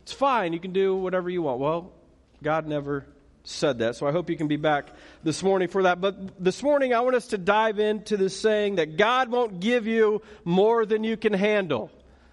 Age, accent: 40-59, American